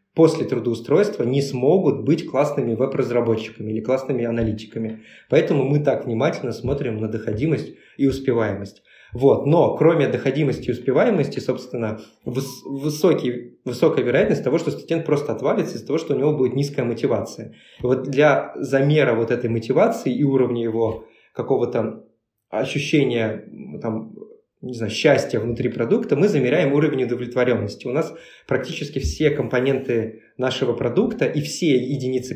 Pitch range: 115-150 Hz